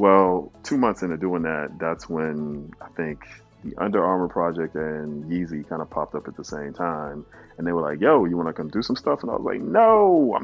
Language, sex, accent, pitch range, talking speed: English, male, American, 75-90 Hz, 235 wpm